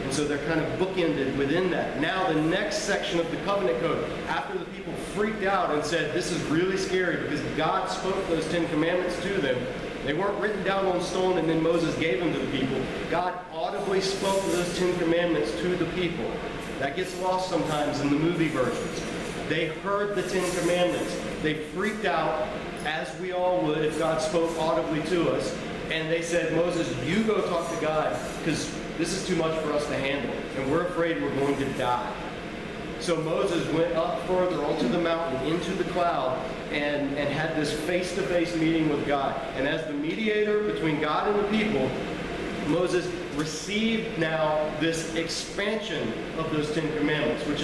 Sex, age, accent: male, 40-59, American